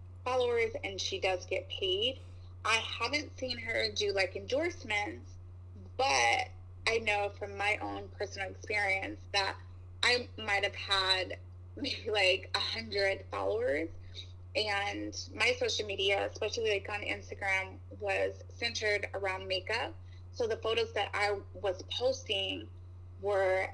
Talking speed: 130 wpm